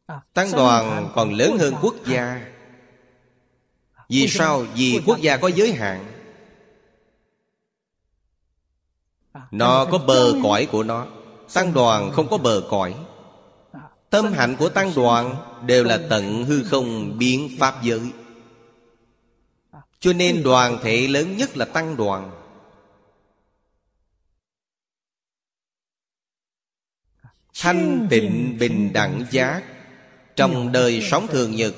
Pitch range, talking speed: 95-130 Hz, 110 wpm